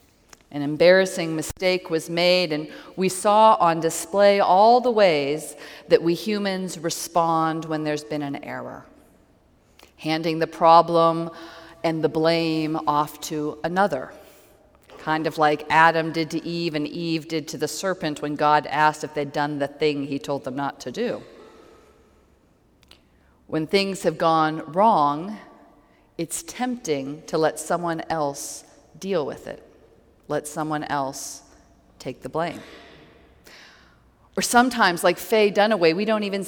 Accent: American